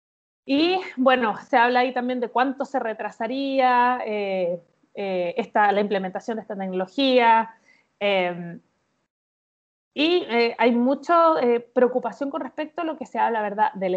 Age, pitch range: 30-49, 215-275 Hz